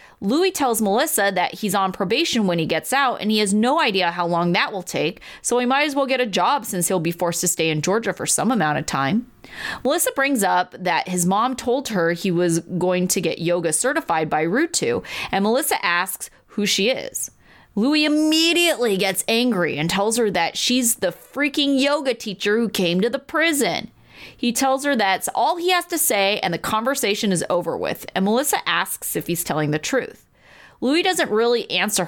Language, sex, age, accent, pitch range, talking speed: English, female, 30-49, American, 180-260 Hz, 205 wpm